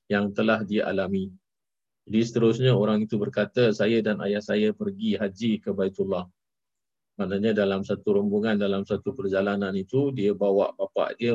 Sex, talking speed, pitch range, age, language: male, 155 wpm, 105-130 Hz, 50-69, Malay